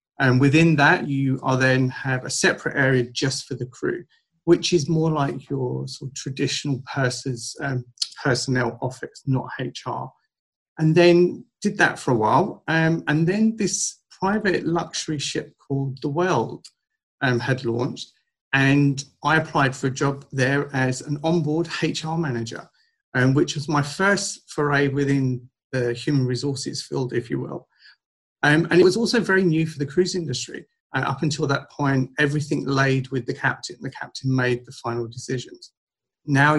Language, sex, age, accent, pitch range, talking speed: English, male, 40-59, British, 130-155 Hz, 165 wpm